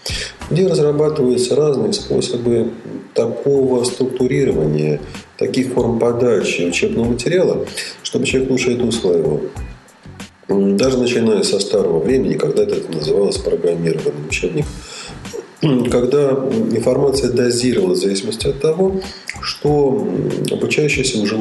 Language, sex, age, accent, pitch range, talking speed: Russian, male, 40-59, native, 120-150 Hz, 100 wpm